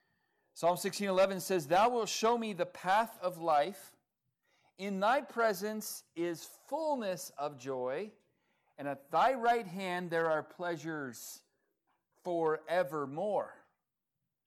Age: 40-59